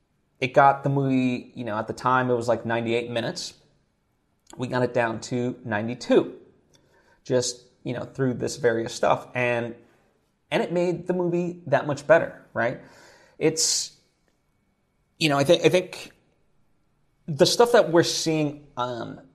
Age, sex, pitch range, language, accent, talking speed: 30-49, male, 125-165 Hz, English, American, 155 wpm